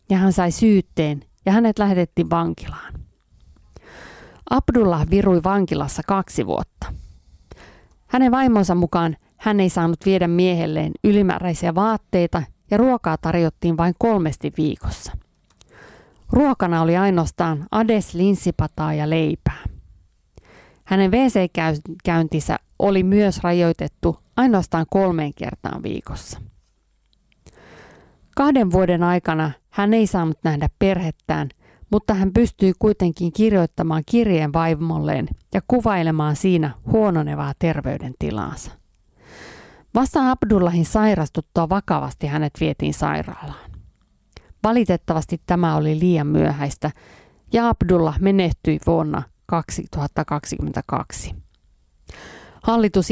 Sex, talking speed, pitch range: female, 95 wpm, 155-195 Hz